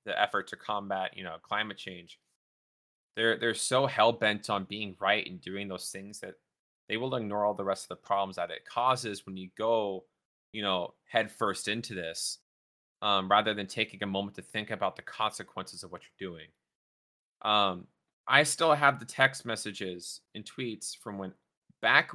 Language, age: English, 20-39